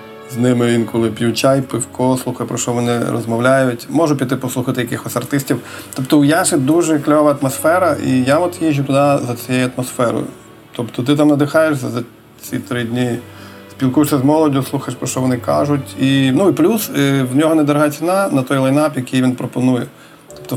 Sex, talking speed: male, 180 wpm